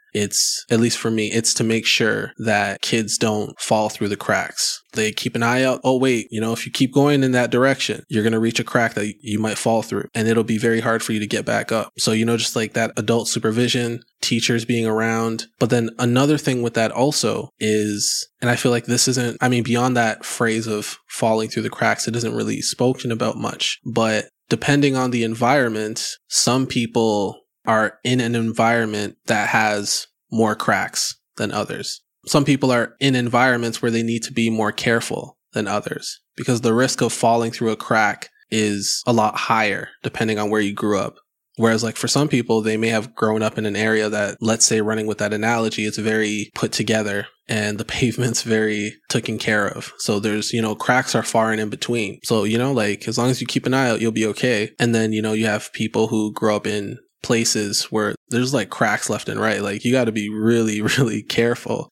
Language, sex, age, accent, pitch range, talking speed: English, male, 20-39, American, 110-120 Hz, 220 wpm